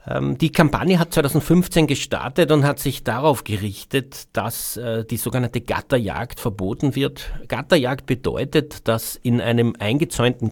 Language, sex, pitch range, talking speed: German, male, 105-130 Hz, 125 wpm